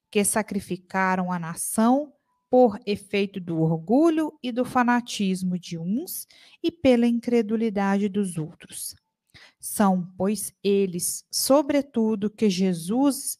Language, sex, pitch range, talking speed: Portuguese, female, 195-250 Hz, 110 wpm